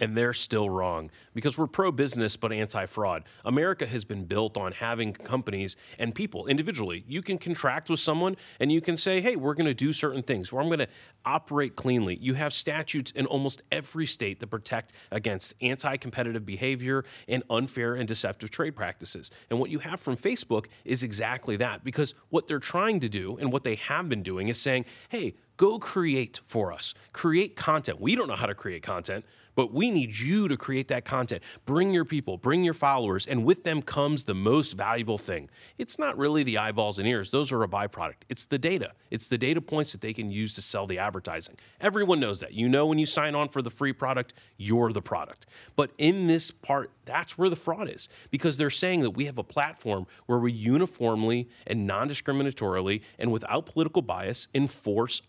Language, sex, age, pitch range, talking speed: English, male, 30-49, 110-150 Hz, 200 wpm